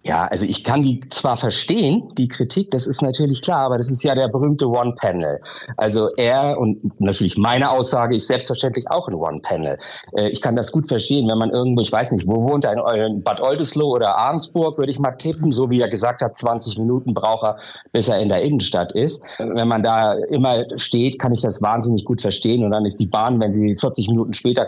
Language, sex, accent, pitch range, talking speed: German, male, German, 120-170 Hz, 220 wpm